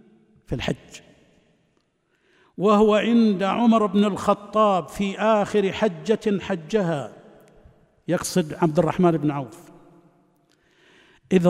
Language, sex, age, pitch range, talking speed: Arabic, male, 50-69, 165-200 Hz, 90 wpm